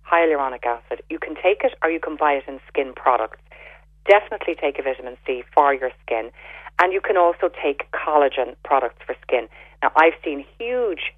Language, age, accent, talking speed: English, 40-59, Irish, 190 wpm